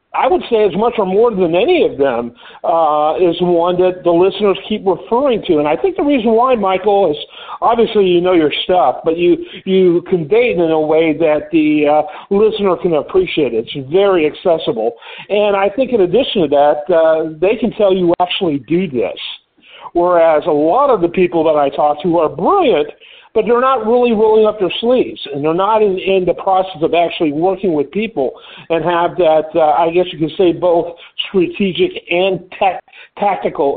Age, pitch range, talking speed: 50-69, 160-215 Hz, 195 wpm